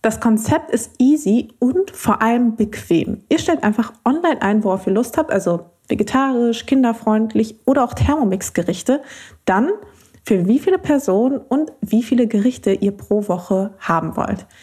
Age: 20-39